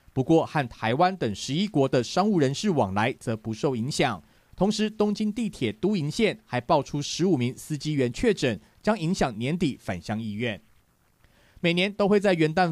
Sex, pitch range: male, 125-180 Hz